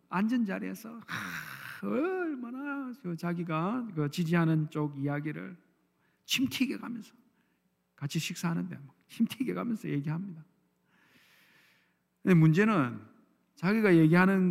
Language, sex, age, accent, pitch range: Korean, male, 50-69, native, 130-185 Hz